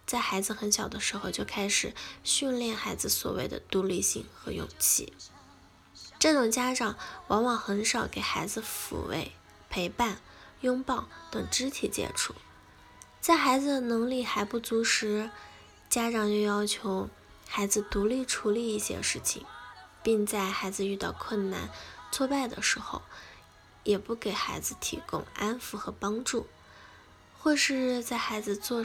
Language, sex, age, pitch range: Chinese, female, 10-29, 205-245 Hz